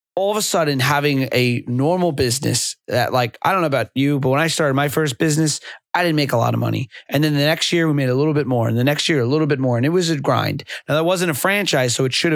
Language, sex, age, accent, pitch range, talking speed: English, male, 30-49, American, 125-160 Hz, 295 wpm